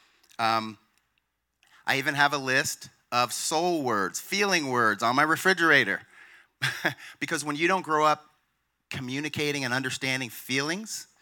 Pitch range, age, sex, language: 115-140 Hz, 30-49, male, English